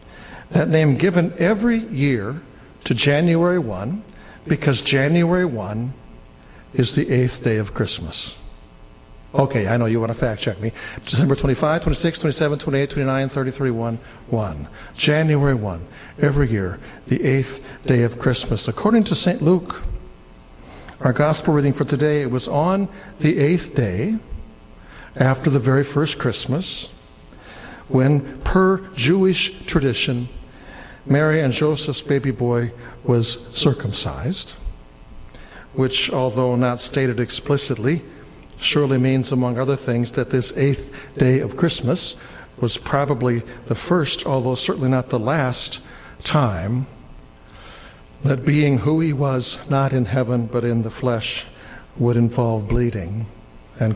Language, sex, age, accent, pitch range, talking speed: English, male, 60-79, American, 120-150 Hz, 130 wpm